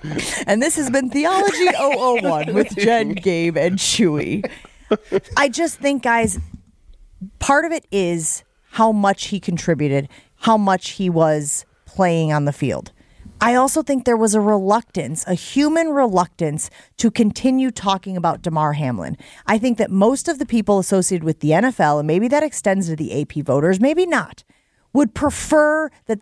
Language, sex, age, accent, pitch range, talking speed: English, female, 30-49, American, 170-240 Hz, 160 wpm